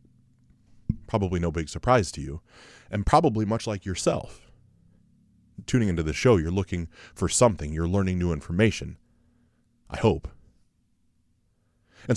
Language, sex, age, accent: English, male, 20-39, American